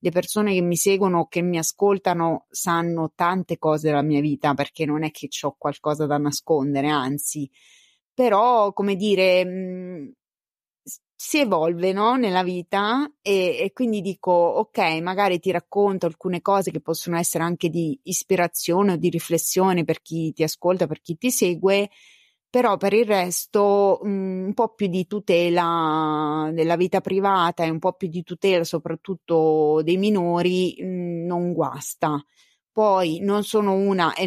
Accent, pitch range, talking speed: native, 165-195 Hz, 150 wpm